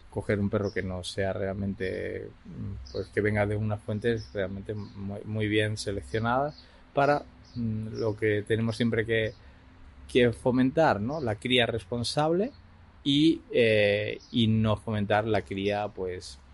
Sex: male